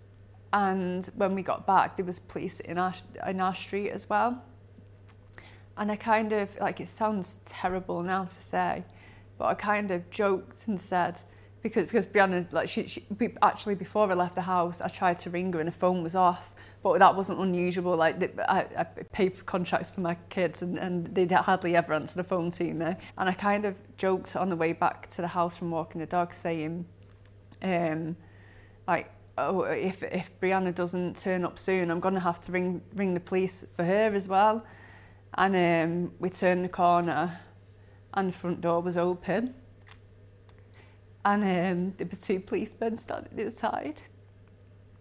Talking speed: 185 wpm